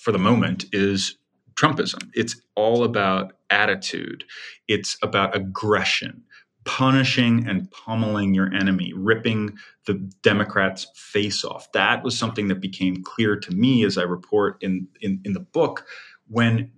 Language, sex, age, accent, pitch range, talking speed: English, male, 30-49, American, 95-120 Hz, 140 wpm